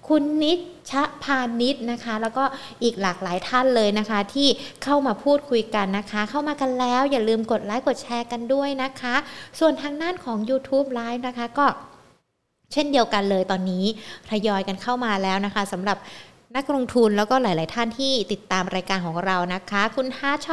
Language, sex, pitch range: Thai, female, 205-275 Hz